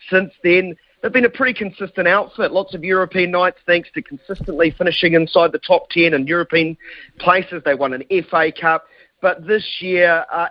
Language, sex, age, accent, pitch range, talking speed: English, male, 40-59, Australian, 150-185 Hz, 185 wpm